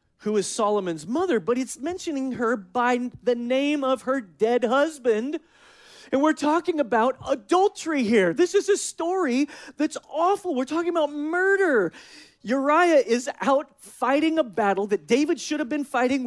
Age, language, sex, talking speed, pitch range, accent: 30-49, English, male, 160 wpm, 235-325 Hz, American